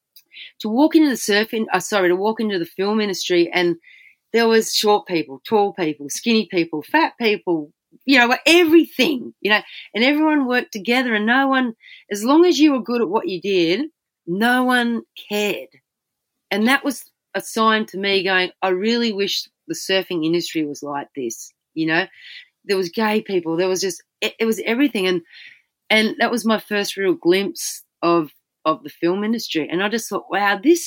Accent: Australian